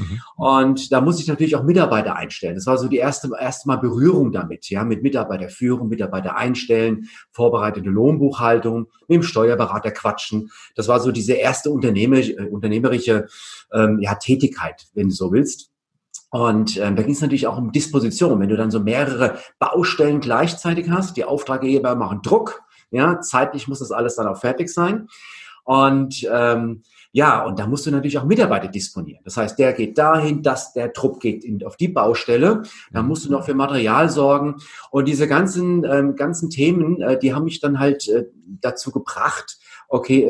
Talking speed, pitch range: 175 wpm, 115-150 Hz